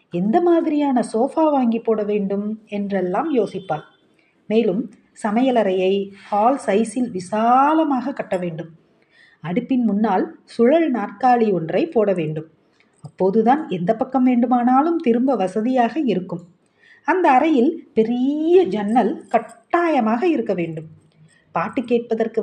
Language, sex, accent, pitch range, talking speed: Tamil, female, native, 190-270 Hz, 100 wpm